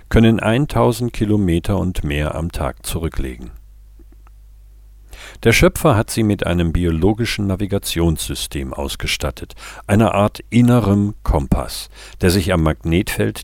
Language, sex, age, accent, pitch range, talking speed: German, male, 50-69, German, 85-105 Hz, 110 wpm